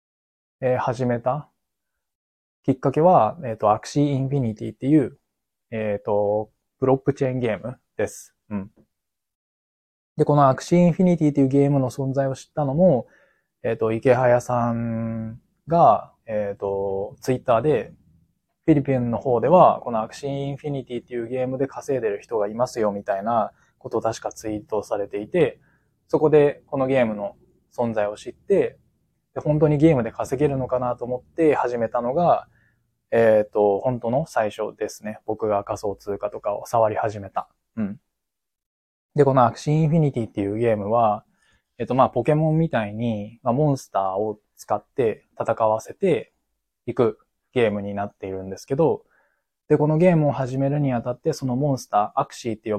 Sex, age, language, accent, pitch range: male, 20-39, Japanese, native, 110-145 Hz